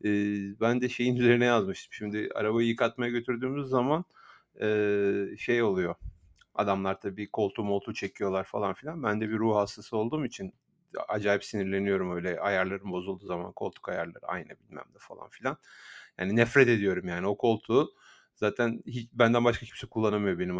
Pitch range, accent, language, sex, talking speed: 105-125 Hz, native, Turkish, male, 150 wpm